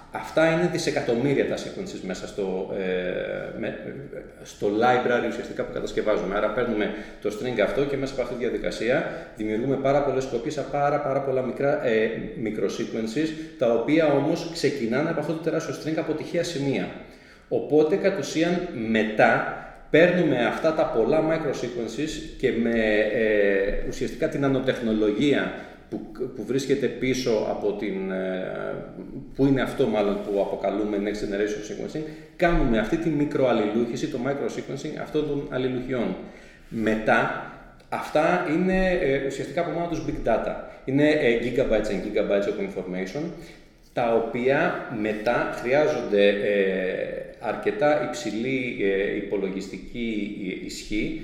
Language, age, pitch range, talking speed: Greek, 30-49, 110-150 Hz, 130 wpm